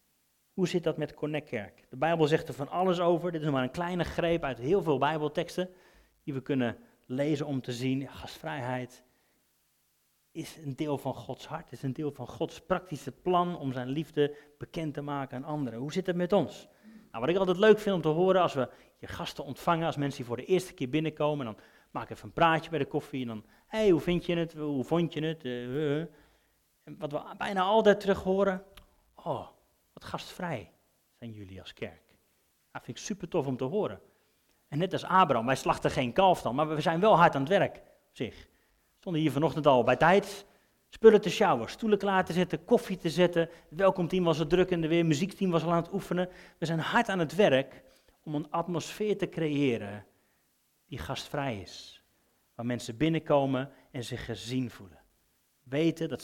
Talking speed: 210 wpm